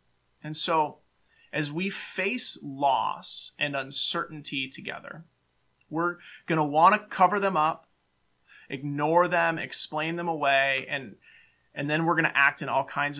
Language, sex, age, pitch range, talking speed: English, male, 30-49, 140-170 Hz, 145 wpm